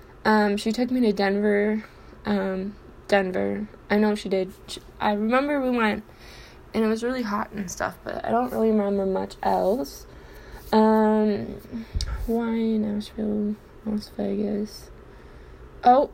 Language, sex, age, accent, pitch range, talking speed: English, female, 10-29, American, 195-225 Hz, 140 wpm